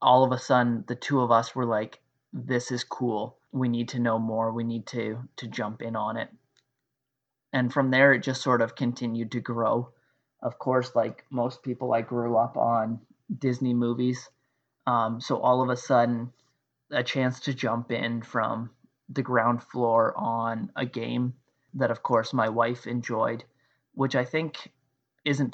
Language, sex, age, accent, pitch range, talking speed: English, male, 20-39, American, 115-130 Hz, 175 wpm